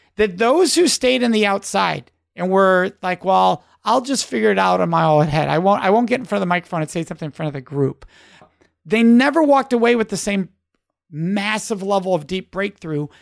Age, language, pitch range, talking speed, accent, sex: 30-49, English, 185-245 Hz, 220 wpm, American, male